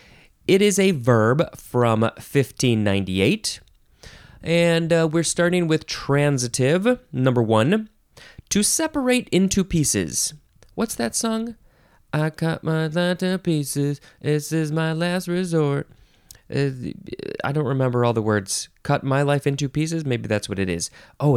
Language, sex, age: English, male, 20-39